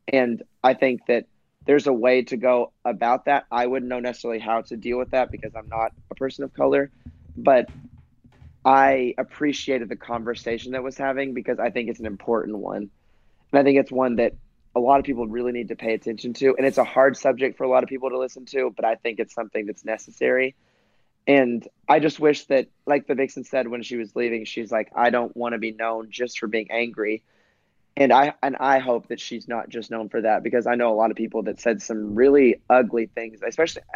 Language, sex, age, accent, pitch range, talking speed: English, male, 20-39, American, 115-130 Hz, 230 wpm